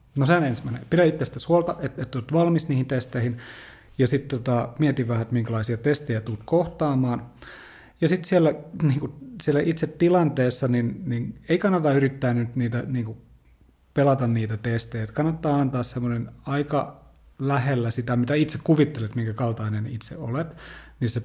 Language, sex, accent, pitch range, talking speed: Finnish, male, native, 120-145 Hz, 155 wpm